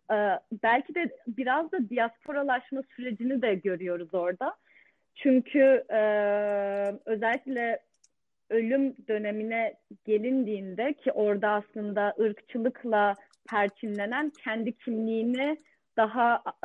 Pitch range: 200-250 Hz